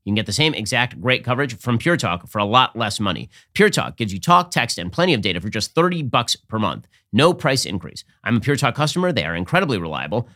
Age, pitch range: 30-49, 105-145 Hz